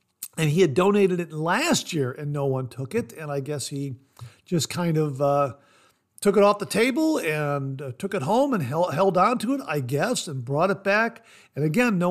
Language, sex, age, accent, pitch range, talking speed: English, male, 50-69, American, 130-175 Hz, 220 wpm